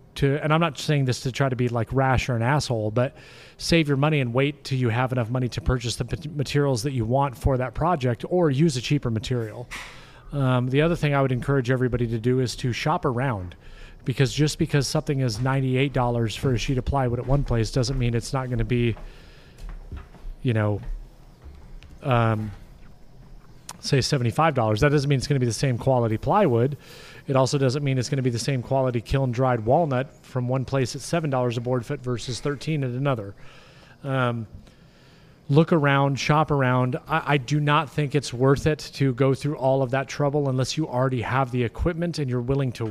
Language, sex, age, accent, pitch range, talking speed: English, male, 30-49, American, 125-145 Hz, 205 wpm